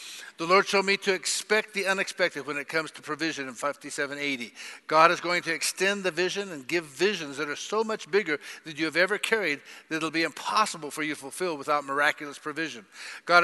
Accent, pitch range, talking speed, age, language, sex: American, 140-170 Hz, 215 wpm, 50-69, English, male